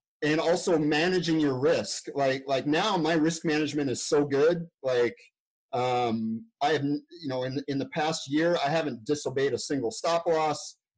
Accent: American